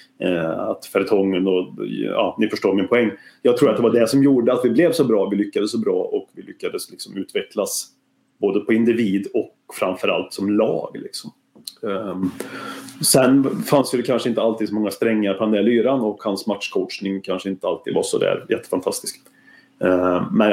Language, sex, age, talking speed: Swedish, male, 30-49, 175 wpm